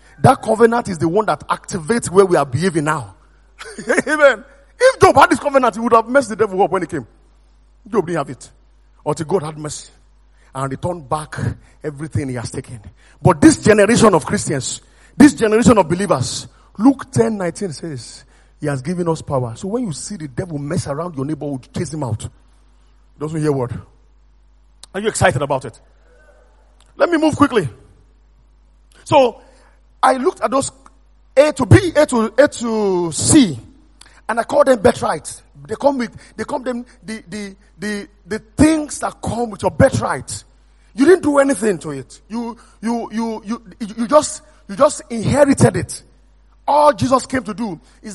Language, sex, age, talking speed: English, male, 40-59, 185 wpm